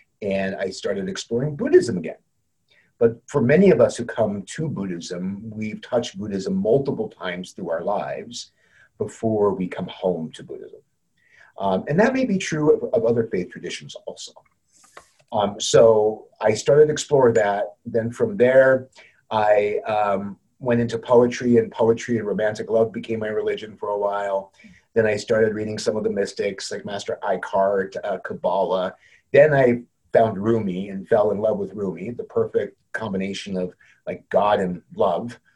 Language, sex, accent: English, male, American